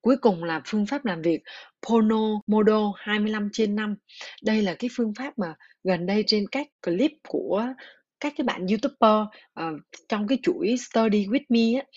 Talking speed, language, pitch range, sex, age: 180 wpm, Vietnamese, 185-250 Hz, female, 20-39